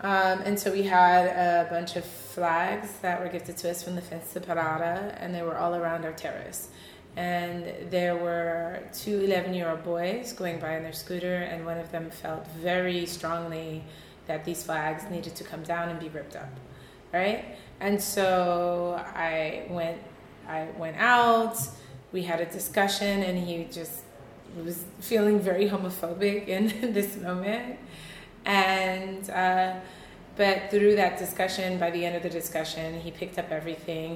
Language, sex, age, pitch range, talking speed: German, female, 20-39, 165-190 Hz, 165 wpm